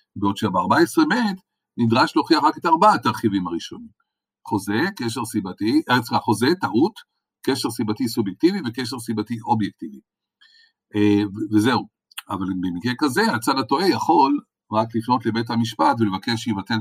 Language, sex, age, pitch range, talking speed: Hebrew, male, 50-69, 110-165 Hz, 125 wpm